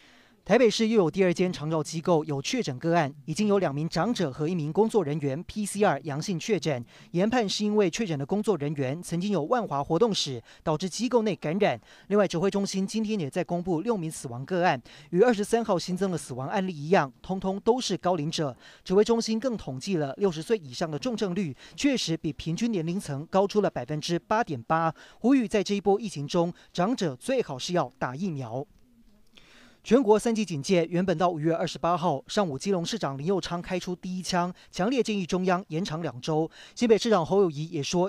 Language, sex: Chinese, male